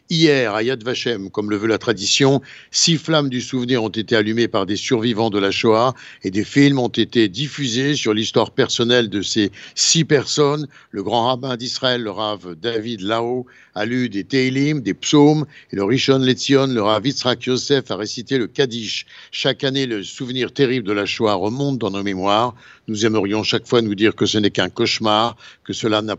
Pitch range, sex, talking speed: 110-135 Hz, male, 200 wpm